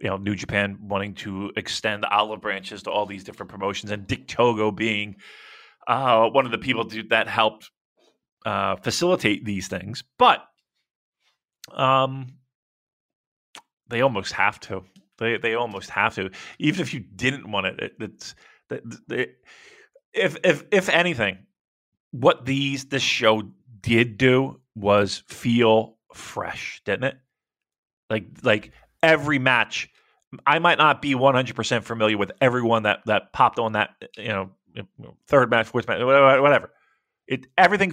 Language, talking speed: English, 140 wpm